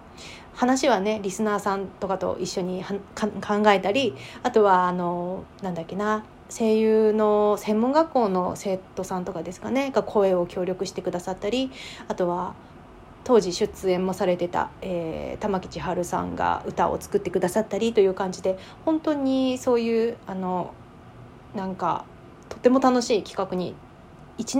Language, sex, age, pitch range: Japanese, female, 30-49, 185-230 Hz